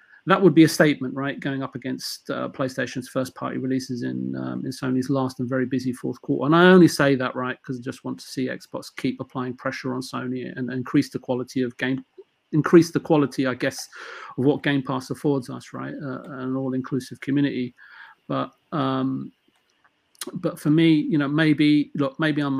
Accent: British